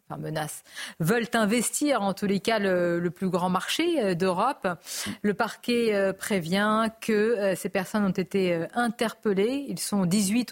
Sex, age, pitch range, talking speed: female, 40-59, 195-240 Hz, 165 wpm